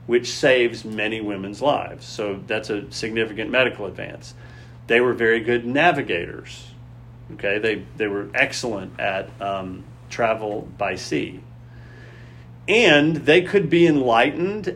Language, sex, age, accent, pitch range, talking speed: English, male, 40-59, American, 110-130 Hz, 125 wpm